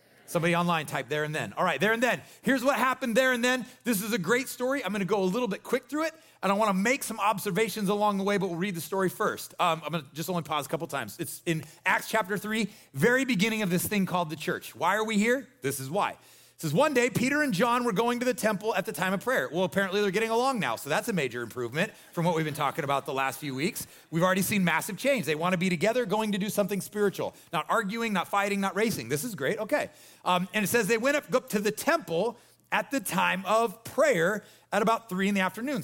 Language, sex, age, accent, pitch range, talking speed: English, male, 30-49, American, 170-225 Hz, 265 wpm